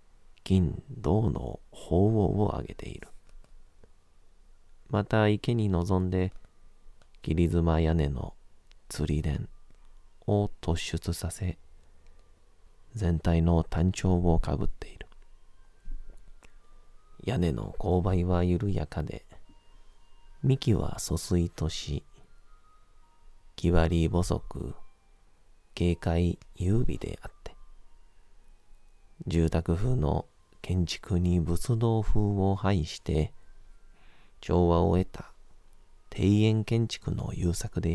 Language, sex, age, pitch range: Japanese, male, 40-59, 80-100 Hz